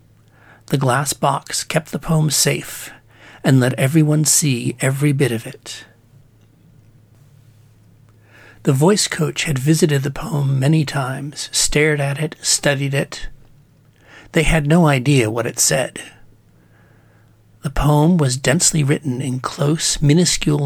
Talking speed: 130 wpm